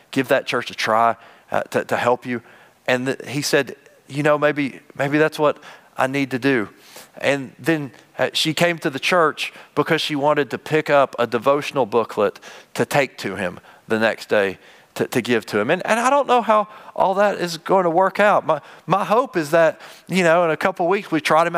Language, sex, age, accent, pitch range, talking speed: English, male, 40-59, American, 130-180 Hz, 225 wpm